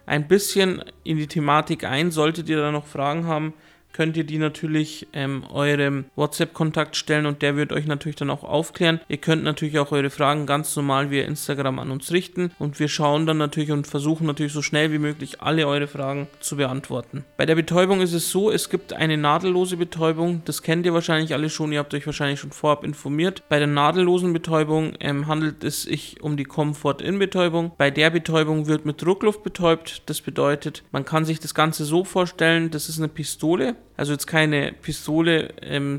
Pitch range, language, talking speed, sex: 145-165 Hz, German, 195 wpm, male